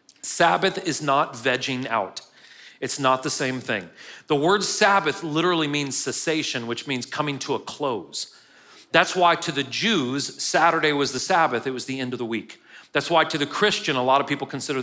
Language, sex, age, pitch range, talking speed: English, male, 40-59, 130-170 Hz, 195 wpm